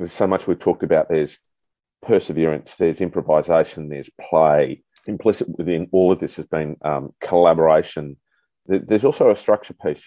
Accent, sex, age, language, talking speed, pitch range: Australian, male, 40-59, English, 155 wpm, 75-90 Hz